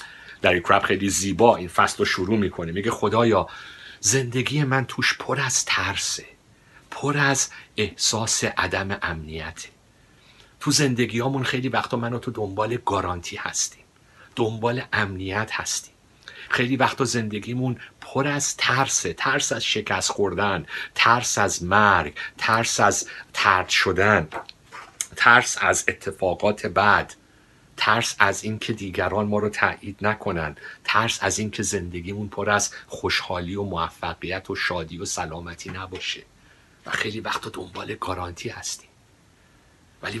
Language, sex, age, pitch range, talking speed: Persian, male, 50-69, 95-120 Hz, 125 wpm